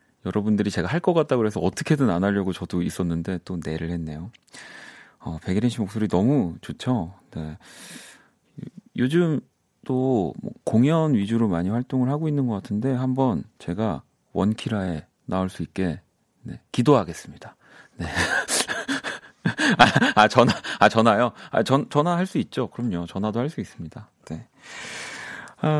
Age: 40-59